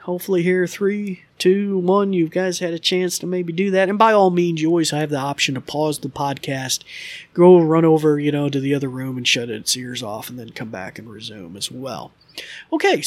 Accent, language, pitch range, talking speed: American, English, 145-180 Hz, 230 wpm